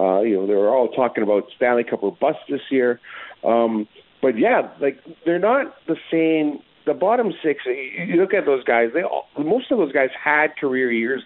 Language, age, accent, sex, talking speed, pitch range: English, 50-69, American, male, 210 wpm, 110-155 Hz